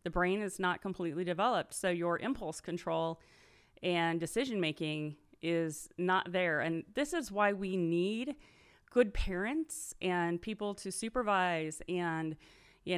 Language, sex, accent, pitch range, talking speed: English, female, American, 165-215 Hz, 135 wpm